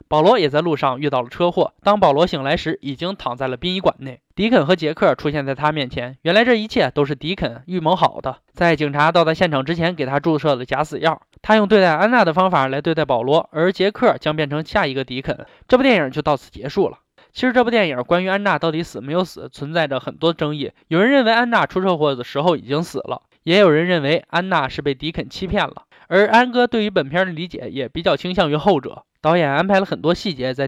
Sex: male